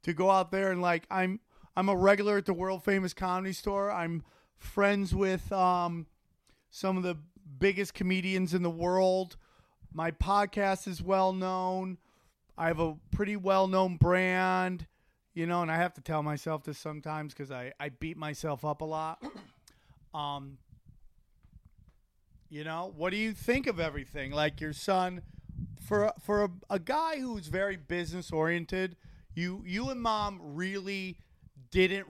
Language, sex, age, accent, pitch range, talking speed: English, male, 40-59, American, 160-195 Hz, 160 wpm